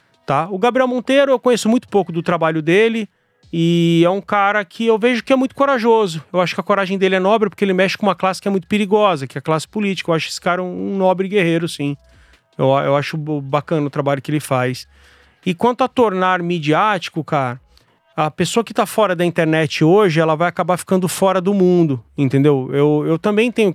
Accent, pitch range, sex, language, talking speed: Brazilian, 155-200 Hz, male, Portuguese, 225 wpm